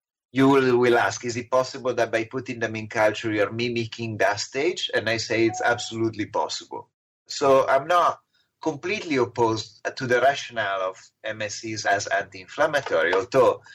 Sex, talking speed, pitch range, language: male, 155 wpm, 115-175 Hz, English